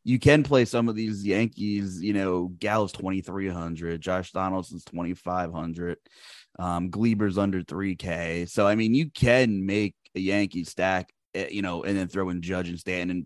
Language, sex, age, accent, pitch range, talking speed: English, male, 20-39, American, 90-115 Hz, 170 wpm